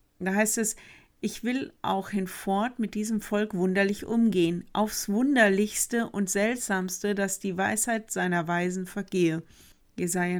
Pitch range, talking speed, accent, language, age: 180-210 Hz, 135 wpm, German, German, 50-69